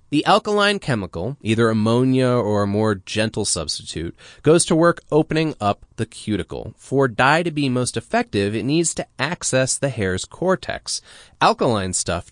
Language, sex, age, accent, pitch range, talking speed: English, male, 30-49, American, 100-145 Hz, 155 wpm